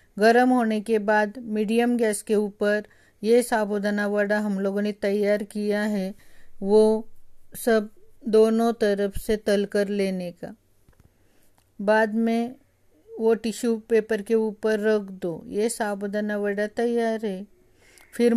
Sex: female